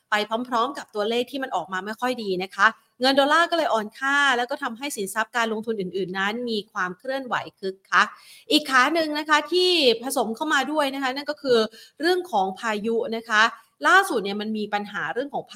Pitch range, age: 200-245 Hz, 30-49